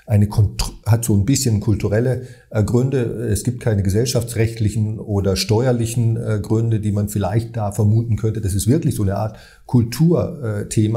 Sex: male